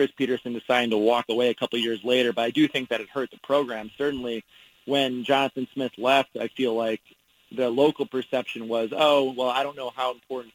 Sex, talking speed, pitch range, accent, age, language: male, 215 wpm, 115-130 Hz, American, 30-49, English